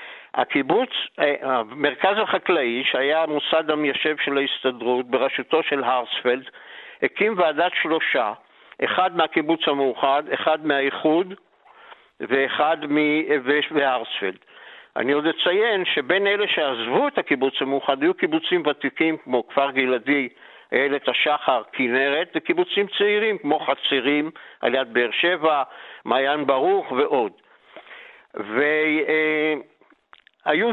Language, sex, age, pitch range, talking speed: Hebrew, male, 60-79, 145-205 Hz, 100 wpm